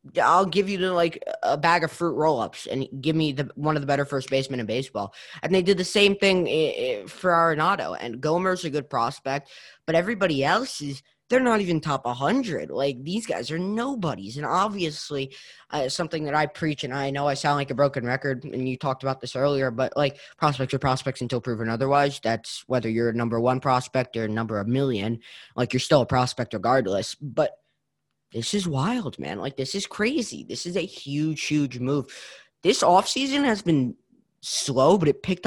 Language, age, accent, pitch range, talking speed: English, 20-39, American, 130-170 Hz, 200 wpm